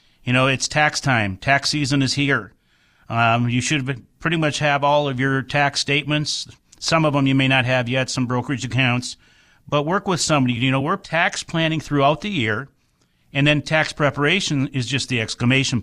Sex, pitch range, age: male, 125-150 Hz, 40-59